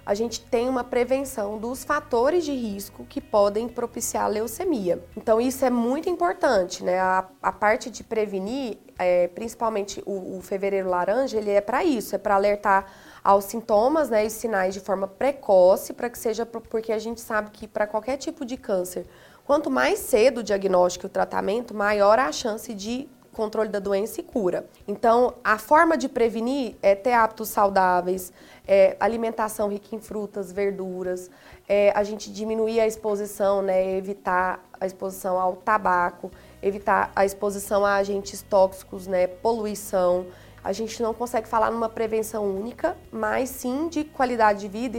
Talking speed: 165 wpm